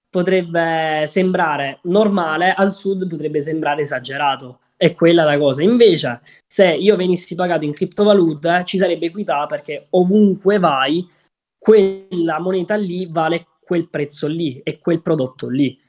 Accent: native